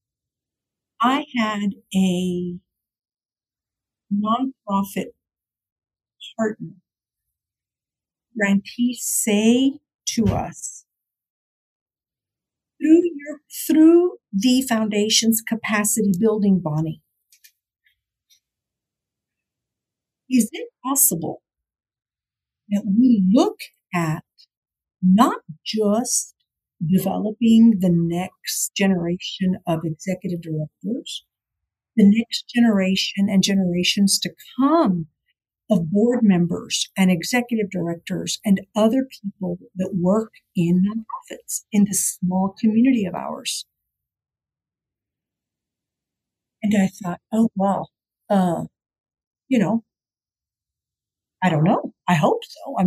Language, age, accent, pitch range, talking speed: English, 50-69, American, 180-230 Hz, 85 wpm